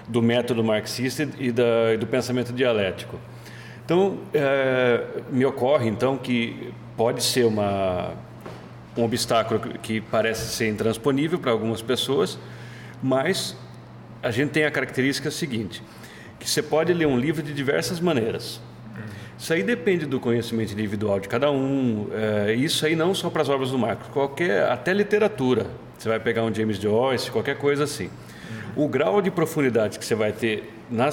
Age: 40-59